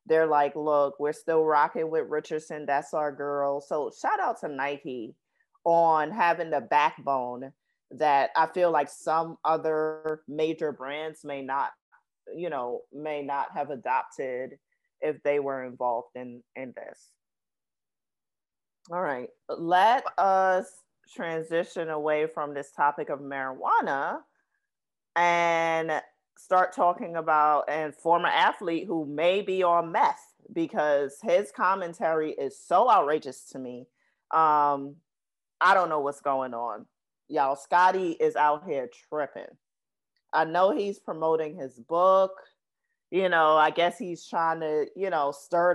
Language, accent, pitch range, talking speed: English, American, 145-180 Hz, 135 wpm